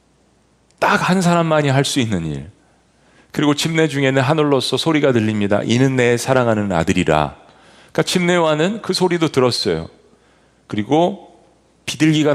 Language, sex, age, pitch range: Korean, male, 40-59, 110-160 Hz